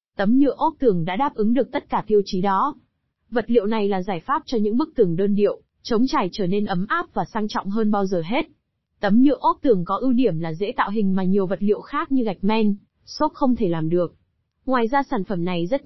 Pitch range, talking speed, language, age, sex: 200-250 Hz, 255 wpm, Vietnamese, 20-39, female